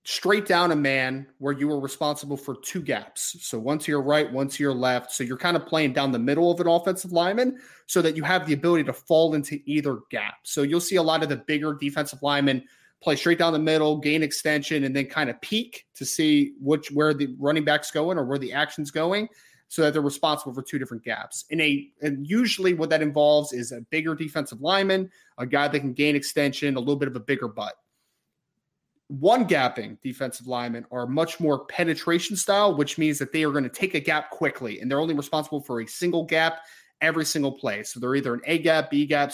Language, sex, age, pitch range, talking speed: English, male, 30-49, 140-170 Hz, 220 wpm